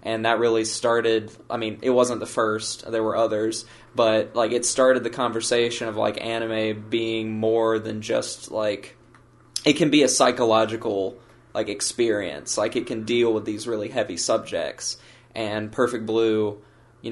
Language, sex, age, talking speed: English, male, 20-39, 165 wpm